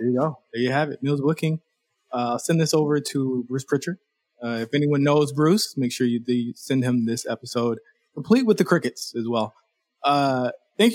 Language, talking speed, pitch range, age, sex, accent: English, 210 wpm, 125-155 Hz, 20-39, male, American